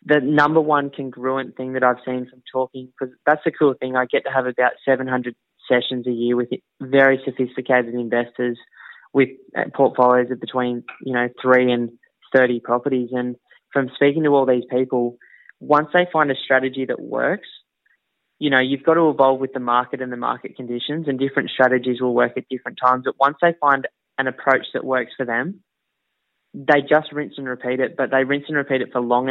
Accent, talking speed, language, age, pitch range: Australian, 200 wpm, English, 20-39, 125-135 Hz